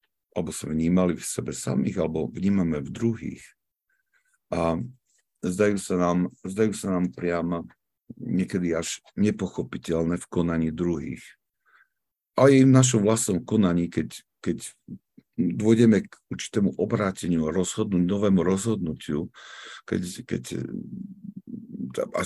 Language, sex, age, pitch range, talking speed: Slovak, male, 50-69, 85-100 Hz, 110 wpm